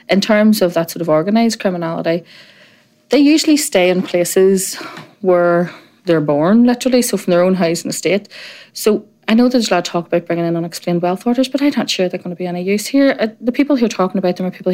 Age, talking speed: 30-49, 235 wpm